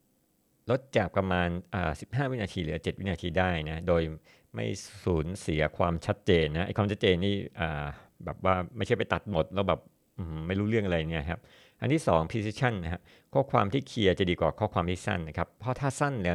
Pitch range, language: 85-100 Hz, Thai